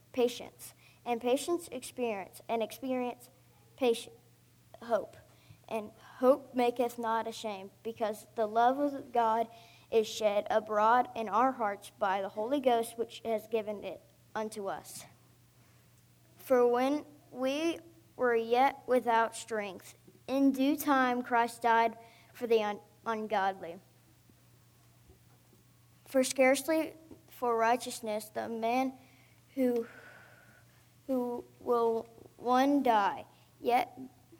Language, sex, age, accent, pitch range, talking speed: English, female, 20-39, American, 220-255 Hz, 105 wpm